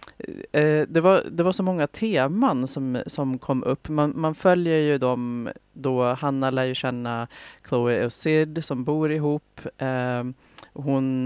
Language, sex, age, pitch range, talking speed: Swedish, female, 30-49, 125-150 Hz, 150 wpm